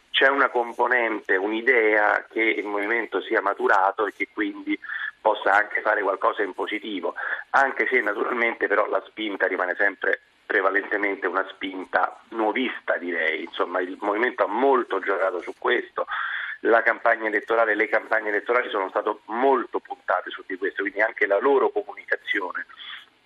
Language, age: Italian, 40-59